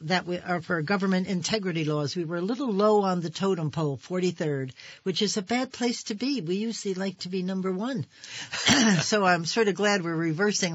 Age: 60-79